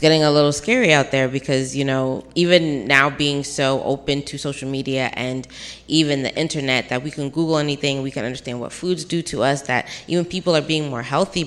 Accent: American